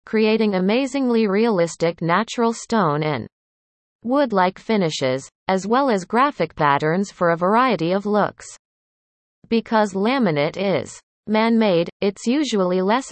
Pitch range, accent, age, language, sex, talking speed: 160-225 Hz, American, 30-49, English, female, 115 wpm